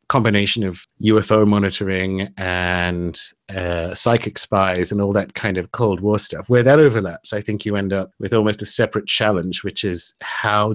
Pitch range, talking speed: 95-110 Hz, 180 wpm